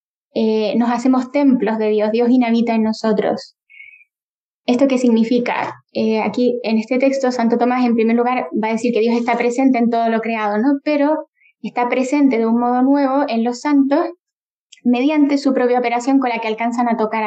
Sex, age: female, 10-29